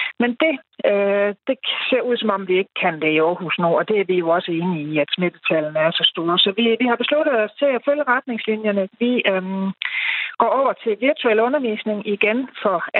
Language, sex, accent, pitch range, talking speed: Danish, female, native, 175-225 Hz, 215 wpm